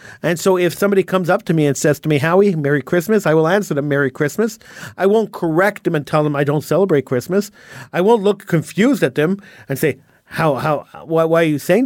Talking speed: 240 wpm